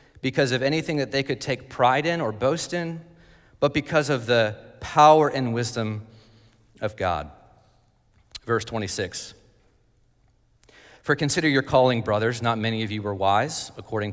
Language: English